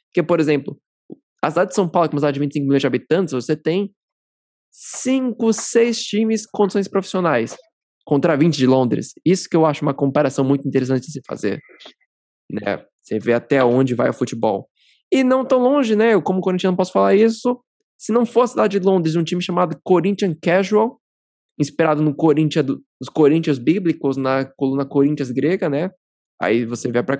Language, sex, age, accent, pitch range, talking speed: Portuguese, male, 20-39, Brazilian, 140-205 Hz, 190 wpm